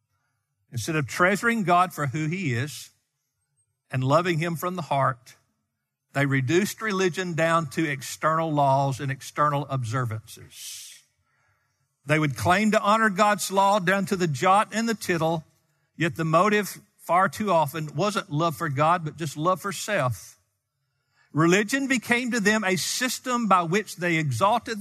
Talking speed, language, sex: 150 wpm, English, male